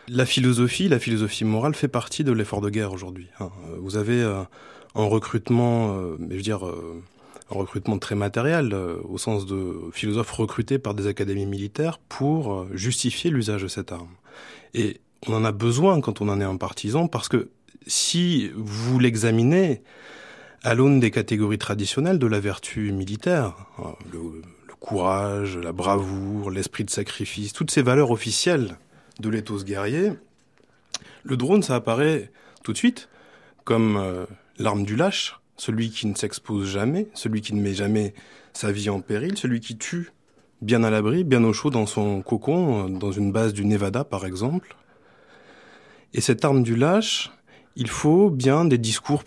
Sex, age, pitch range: male, 20-39, 100-135 Hz